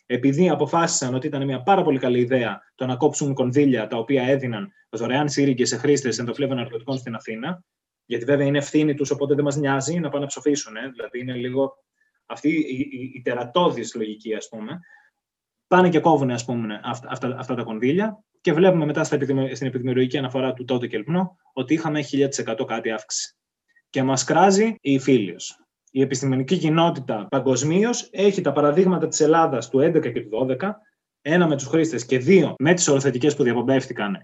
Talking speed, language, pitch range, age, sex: 180 wpm, Greek, 130-175 Hz, 20-39, male